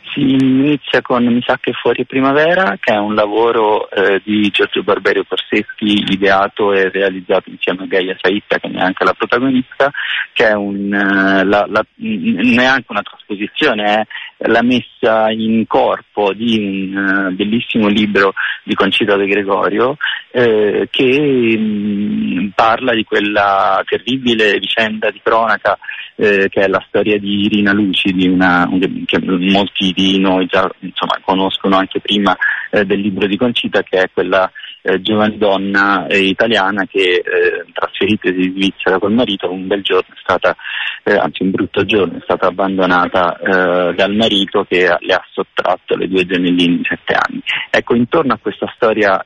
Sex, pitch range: male, 95-125 Hz